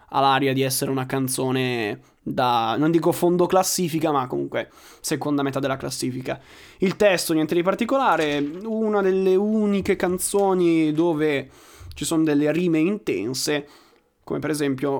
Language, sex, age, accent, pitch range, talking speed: Italian, male, 20-39, native, 140-195 Hz, 140 wpm